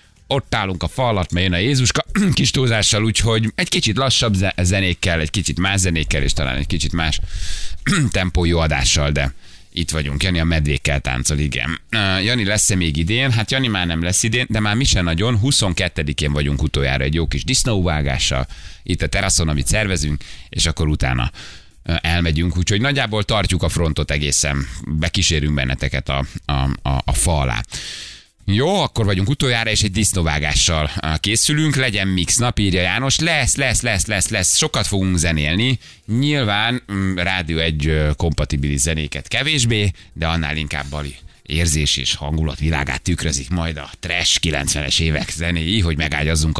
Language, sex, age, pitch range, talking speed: Hungarian, male, 30-49, 75-110 Hz, 160 wpm